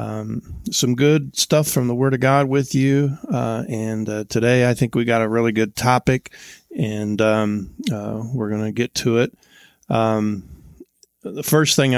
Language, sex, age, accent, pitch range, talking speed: English, male, 40-59, American, 105-125 Hz, 180 wpm